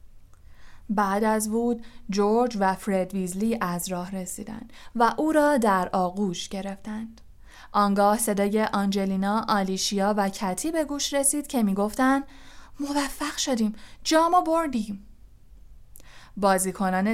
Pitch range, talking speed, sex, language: 195-235 Hz, 110 wpm, female, Persian